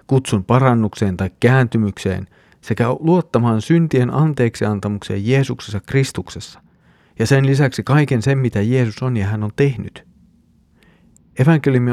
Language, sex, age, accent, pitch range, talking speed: Finnish, male, 40-59, native, 105-140 Hz, 115 wpm